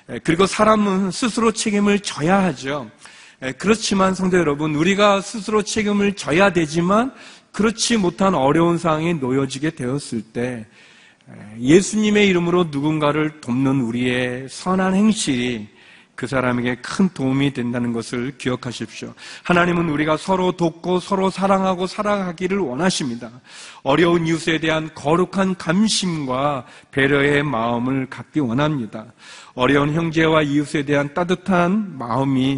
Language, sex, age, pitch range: Korean, male, 40-59, 135-180 Hz